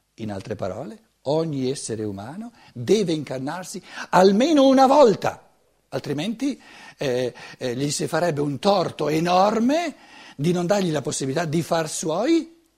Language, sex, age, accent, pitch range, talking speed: Italian, male, 60-79, native, 145-215 Hz, 130 wpm